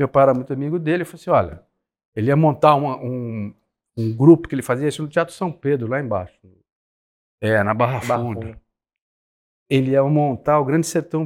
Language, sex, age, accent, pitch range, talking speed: Portuguese, male, 50-69, Brazilian, 120-160 Hz, 190 wpm